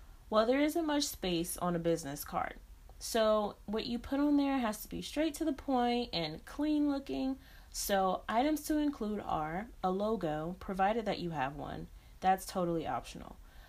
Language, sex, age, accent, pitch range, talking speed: English, female, 30-49, American, 175-235 Hz, 175 wpm